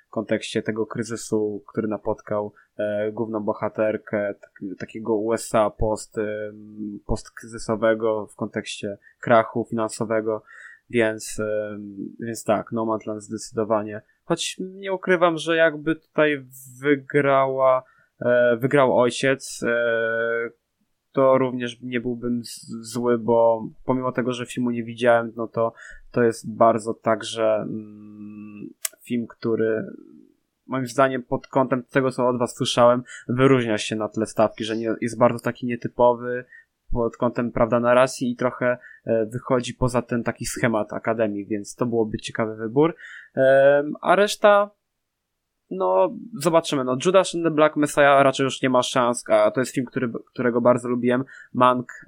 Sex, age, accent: male, 20-39, native